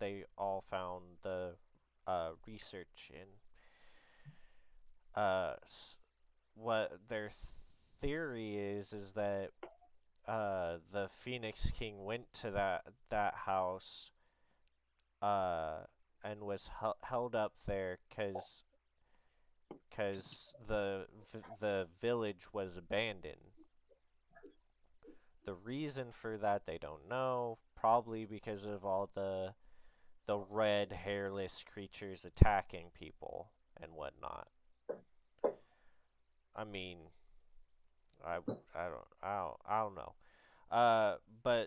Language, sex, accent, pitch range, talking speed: English, male, American, 90-110 Hz, 100 wpm